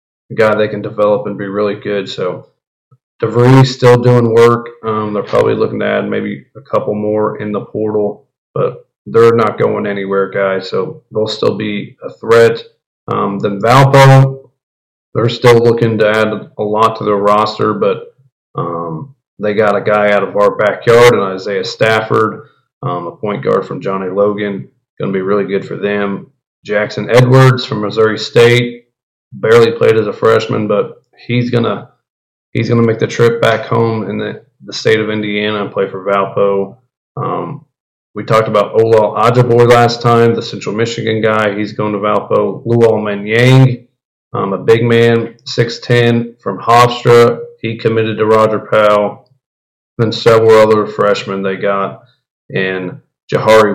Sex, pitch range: male, 105-120 Hz